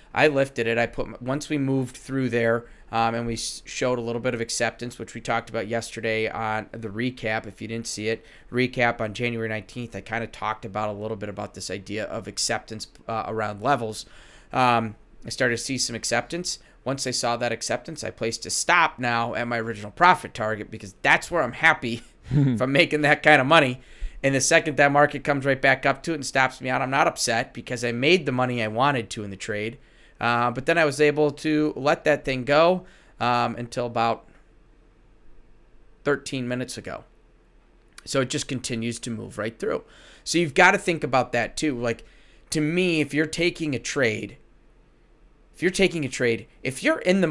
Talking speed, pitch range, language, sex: 210 wpm, 115-145 Hz, English, male